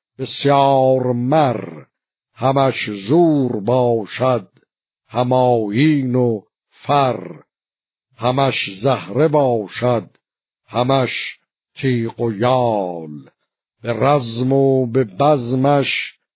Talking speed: 75 wpm